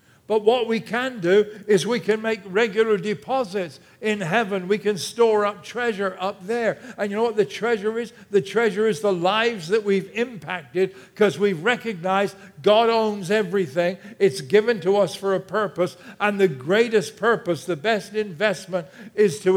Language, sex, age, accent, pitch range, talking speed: English, male, 60-79, American, 135-200 Hz, 175 wpm